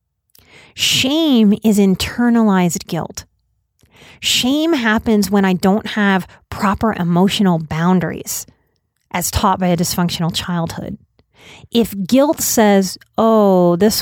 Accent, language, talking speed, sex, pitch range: American, English, 105 wpm, female, 170-225 Hz